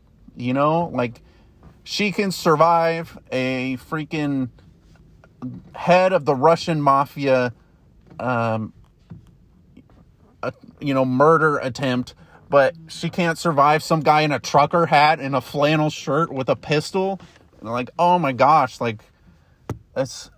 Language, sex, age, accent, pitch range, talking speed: English, male, 30-49, American, 125-160 Hz, 125 wpm